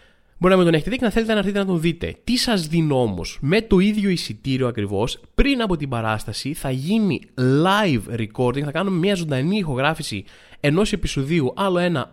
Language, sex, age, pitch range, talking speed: Greek, male, 20-39, 140-205 Hz, 200 wpm